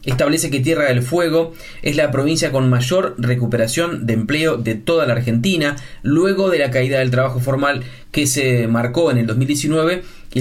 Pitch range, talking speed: 120-150 Hz, 180 wpm